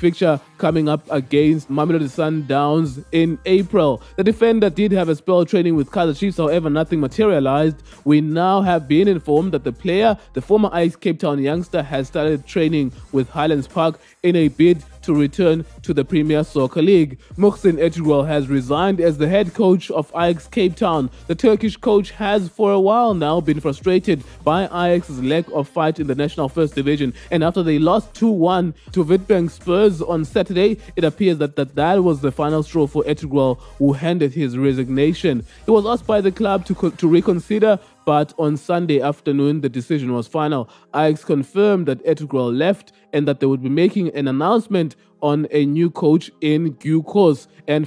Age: 20-39